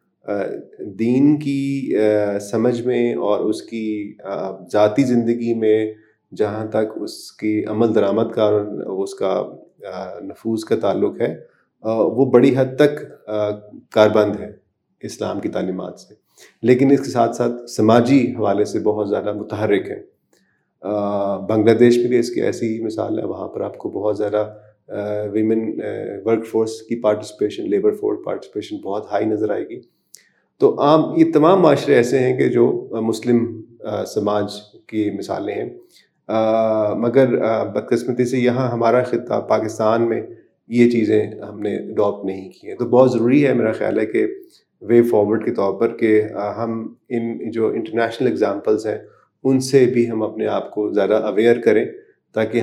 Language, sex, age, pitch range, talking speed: Urdu, male, 30-49, 105-120 Hz, 155 wpm